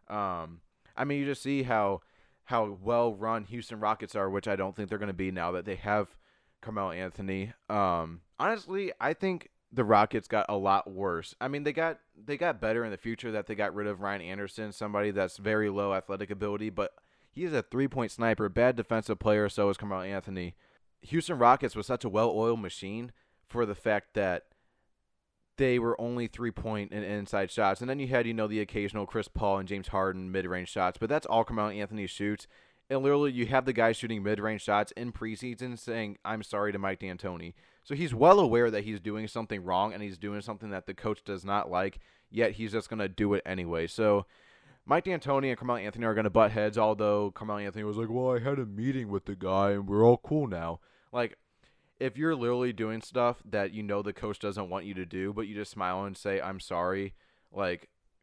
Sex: male